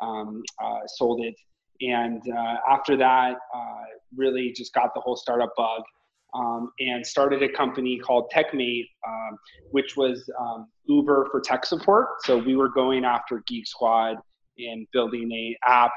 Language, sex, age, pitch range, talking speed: English, male, 20-39, 115-130 Hz, 160 wpm